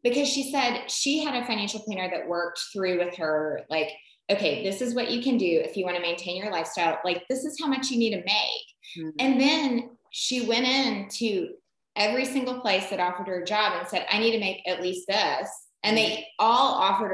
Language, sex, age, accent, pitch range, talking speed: English, female, 20-39, American, 180-235 Hz, 225 wpm